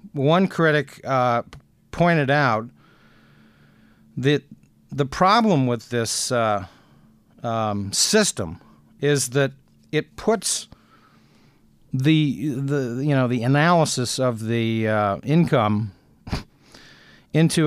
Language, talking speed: English, 95 wpm